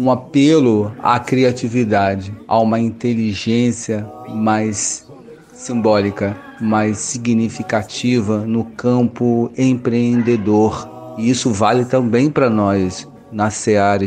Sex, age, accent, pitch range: male, 40-59, Brazilian, 100-115 Hz